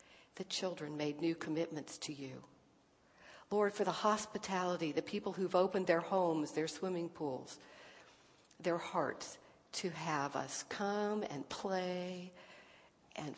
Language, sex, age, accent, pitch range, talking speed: English, female, 60-79, American, 155-185 Hz, 130 wpm